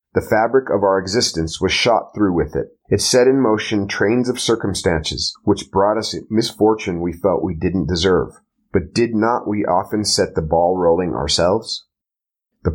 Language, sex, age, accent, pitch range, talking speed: English, male, 30-49, American, 85-105 Hz, 175 wpm